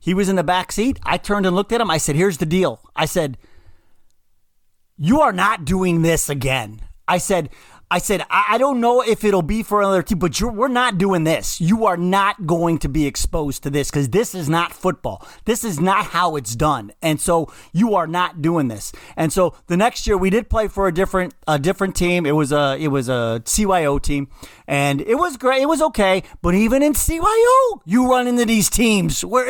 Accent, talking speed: American, 225 wpm